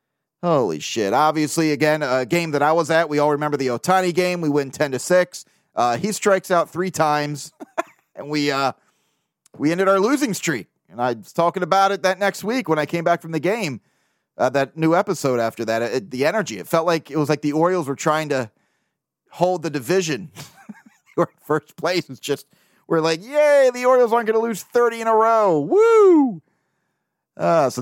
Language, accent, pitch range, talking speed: English, American, 145-195 Hz, 210 wpm